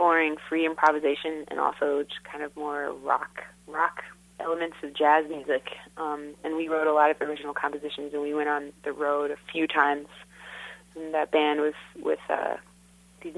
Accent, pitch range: American, 145-165 Hz